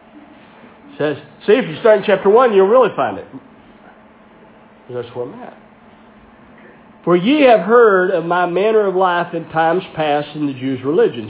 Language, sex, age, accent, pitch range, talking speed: English, male, 50-69, American, 170-230 Hz, 175 wpm